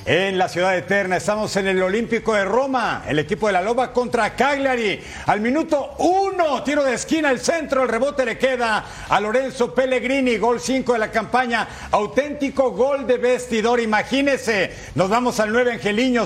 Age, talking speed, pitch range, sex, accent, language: 50-69, 175 wpm, 210-260 Hz, male, Mexican, Spanish